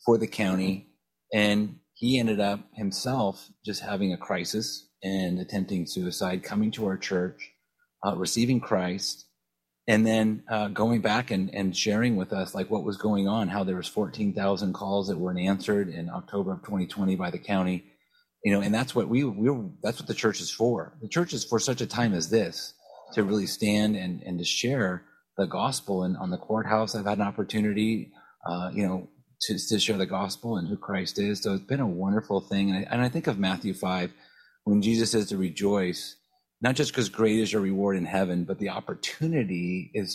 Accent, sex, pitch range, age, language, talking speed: American, male, 95-110 Hz, 30-49, English, 200 wpm